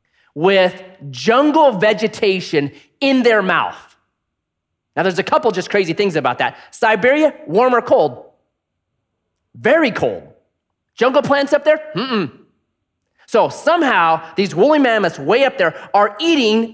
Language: English